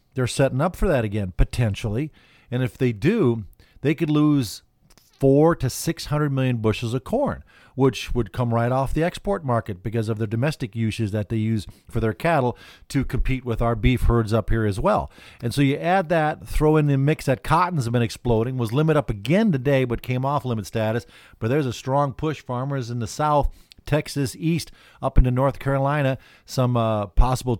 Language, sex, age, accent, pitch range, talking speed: English, male, 50-69, American, 115-140 Hz, 200 wpm